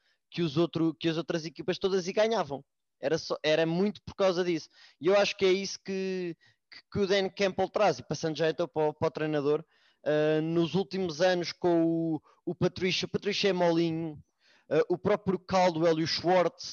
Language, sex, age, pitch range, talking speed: English, male, 20-39, 150-185 Hz, 195 wpm